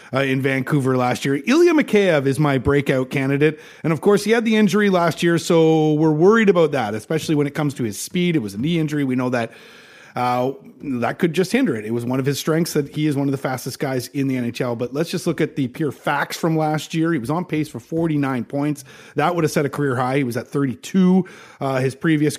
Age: 30-49